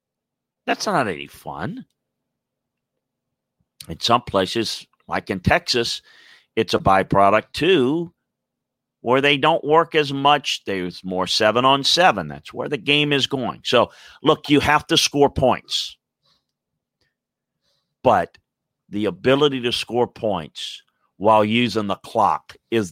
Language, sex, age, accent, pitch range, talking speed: English, male, 50-69, American, 110-145 Hz, 125 wpm